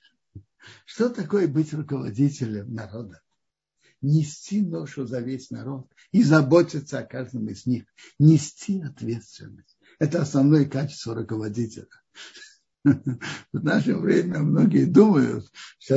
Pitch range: 120-150 Hz